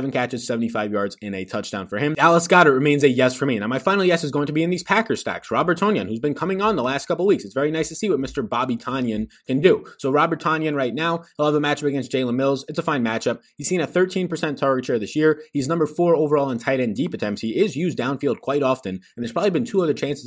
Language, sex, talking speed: English, male, 280 wpm